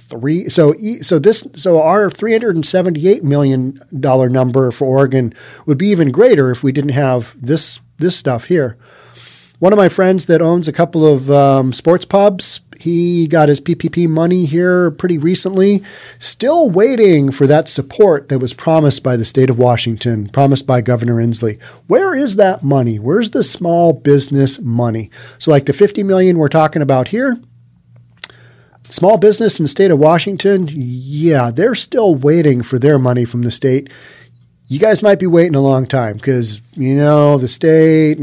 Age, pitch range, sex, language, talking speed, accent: 40-59, 125-170 Hz, male, English, 170 wpm, American